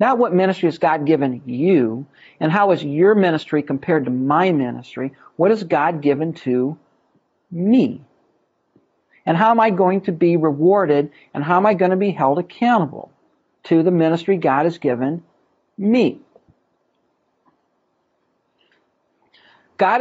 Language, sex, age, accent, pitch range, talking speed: English, male, 50-69, American, 155-205 Hz, 140 wpm